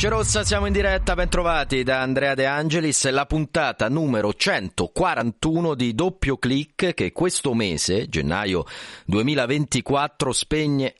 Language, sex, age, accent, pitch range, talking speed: Italian, male, 30-49, native, 100-135 Hz, 120 wpm